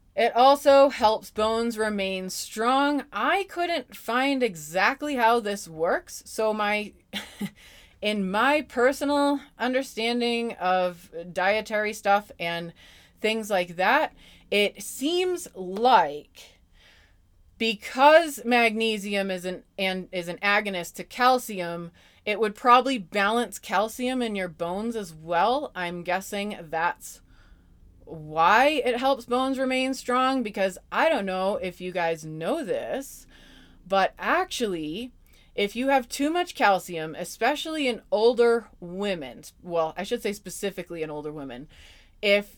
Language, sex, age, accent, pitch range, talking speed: English, female, 20-39, American, 180-240 Hz, 125 wpm